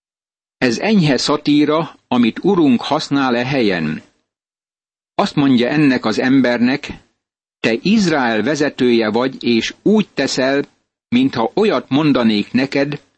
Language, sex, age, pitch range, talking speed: Hungarian, male, 60-79, 125-155 Hz, 110 wpm